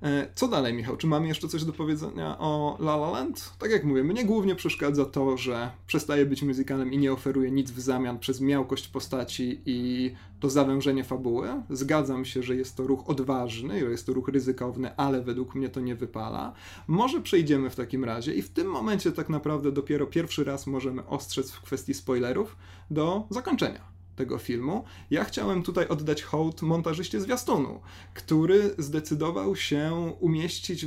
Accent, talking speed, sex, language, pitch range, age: native, 170 wpm, male, Polish, 125-150 Hz, 30-49